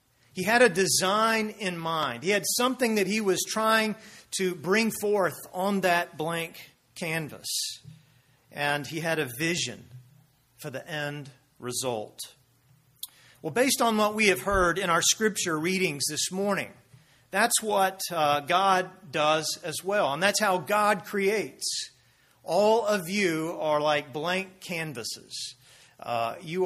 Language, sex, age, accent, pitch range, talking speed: English, male, 40-59, American, 140-185 Hz, 140 wpm